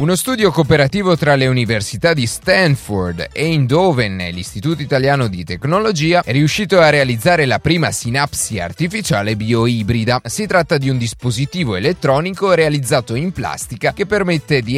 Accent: native